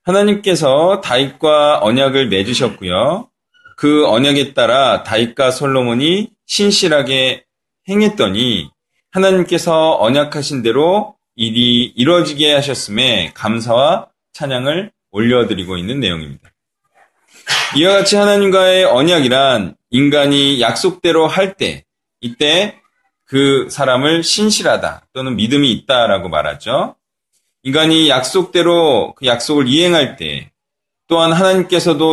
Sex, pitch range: male, 135-190 Hz